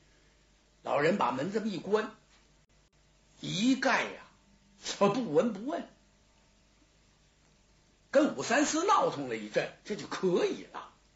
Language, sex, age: Chinese, male, 60-79